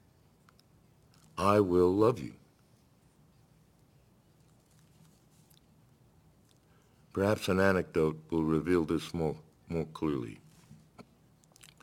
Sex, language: male, English